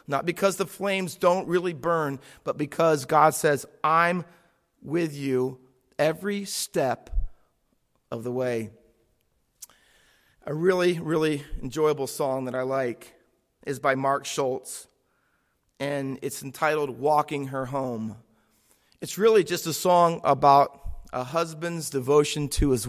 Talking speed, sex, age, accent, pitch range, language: 125 wpm, male, 40-59, American, 135-160 Hz, English